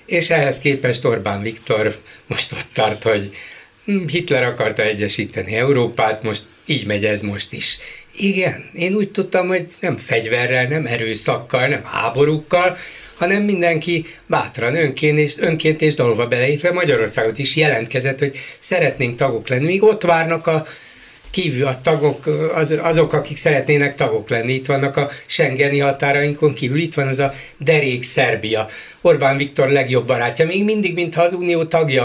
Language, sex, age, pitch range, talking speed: Hungarian, male, 60-79, 120-155 Hz, 150 wpm